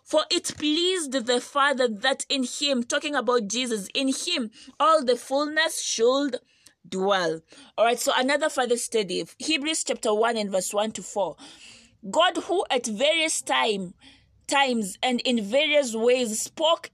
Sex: female